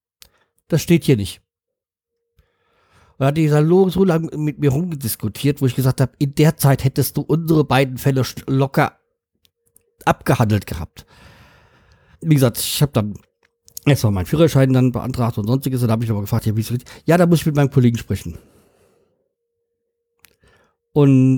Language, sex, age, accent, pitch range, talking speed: German, male, 50-69, German, 110-150 Hz, 165 wpm